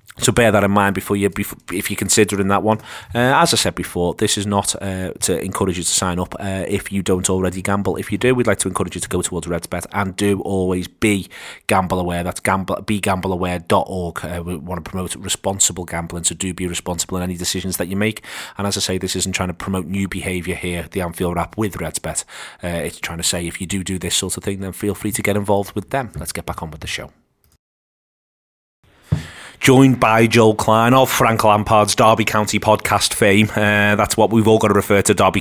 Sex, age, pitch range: male, 30-49, 95-110 Hz